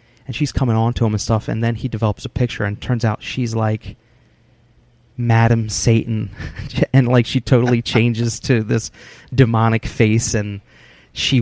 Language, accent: English, American